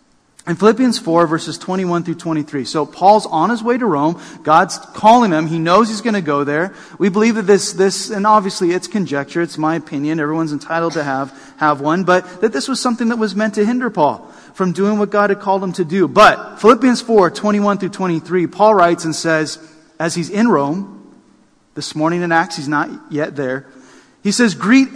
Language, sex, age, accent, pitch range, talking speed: English, male, 30-49, American, 165-220 Hz, 210 wpm